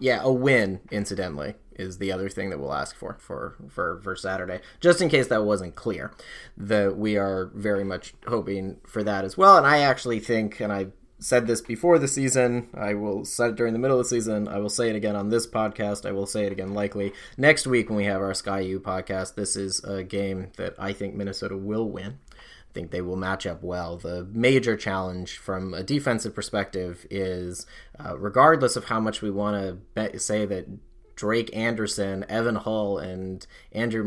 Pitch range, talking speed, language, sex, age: 95-110 Hz, 205 wpm, English, male, 20-39